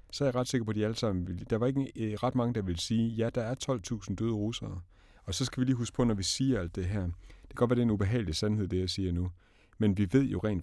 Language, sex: Danish, male